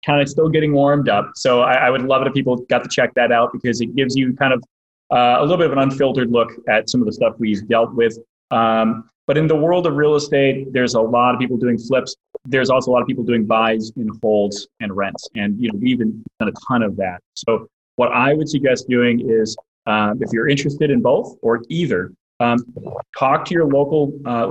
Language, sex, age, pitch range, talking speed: English, male, 30-49, 115-135 Hz, 240 wpm